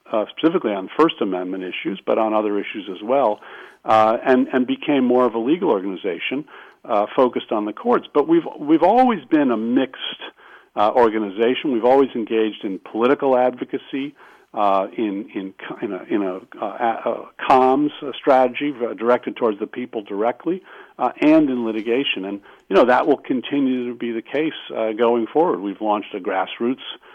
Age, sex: 50-69, male